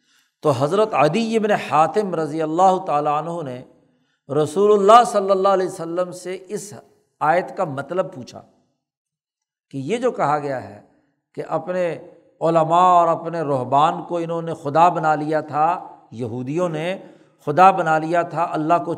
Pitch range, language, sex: 150-185 Hz, Urdu, male